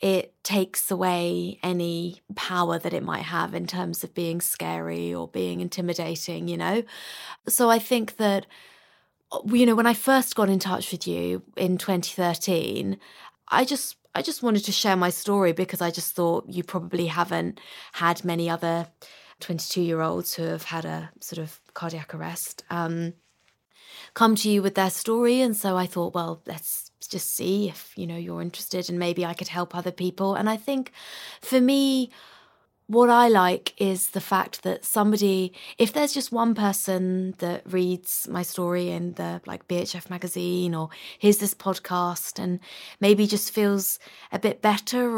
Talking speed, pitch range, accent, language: 170 wpm, 175-205 Hz, British, English